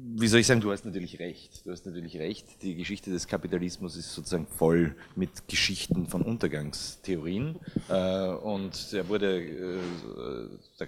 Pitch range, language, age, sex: 90-120 Hz, German, 30-49, male